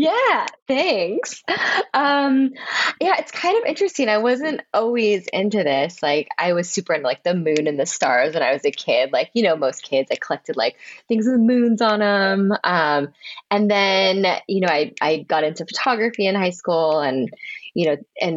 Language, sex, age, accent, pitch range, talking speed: English, female, 20-39, American, 155-230 Hz, 195 wpm